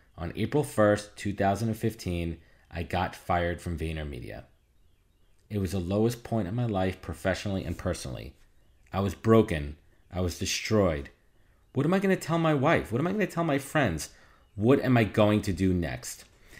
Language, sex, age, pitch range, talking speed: English, male, 30-49, 85-115 Hz, 175 wpm